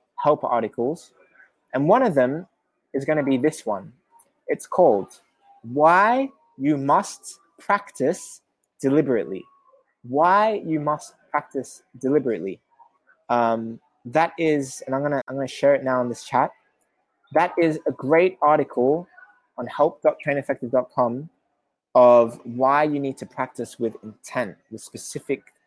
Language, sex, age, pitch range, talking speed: English, male, 20-39, 130-185 Hz, 130 wpm